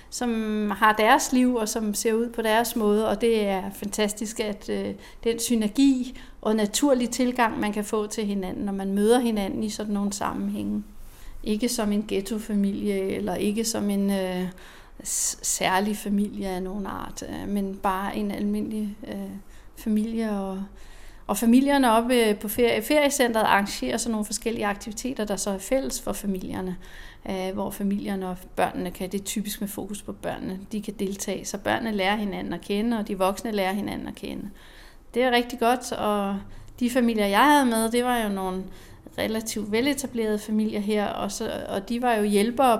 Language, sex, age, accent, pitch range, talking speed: Danish, female, 40-59, native, 195-230 Hz, 180 wpm